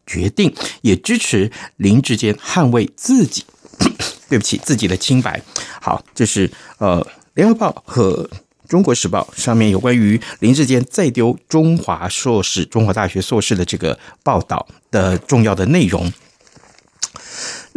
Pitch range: 100-150 Hz